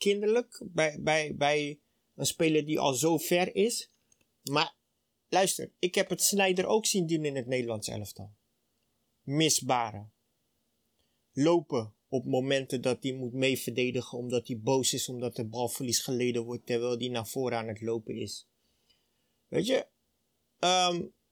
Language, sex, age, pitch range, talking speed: Dutch, male, 30-49, 130-180 Hz, 150 wpm